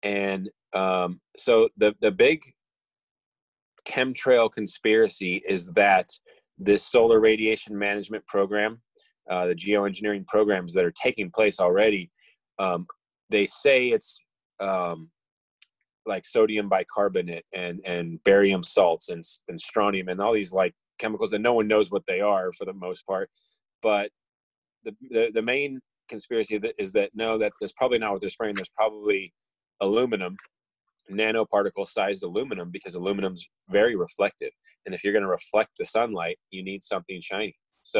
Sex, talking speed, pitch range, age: male, 150 wpm, 95-145 Hz, 30-49